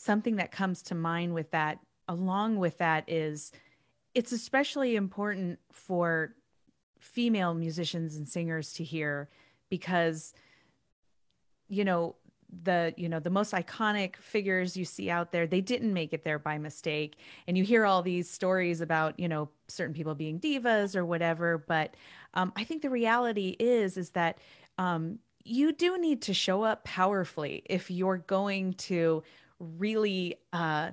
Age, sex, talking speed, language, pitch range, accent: 30-49, female, 155 wpm, English, 170-215 Hz, American